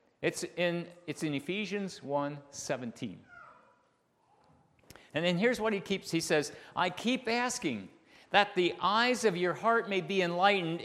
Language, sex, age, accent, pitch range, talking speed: English, male, 50-69, American, 150-215 Hz, 150 wpm